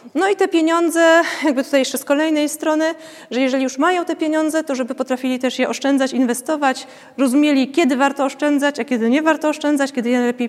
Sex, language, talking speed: female, Polish, 195 wpm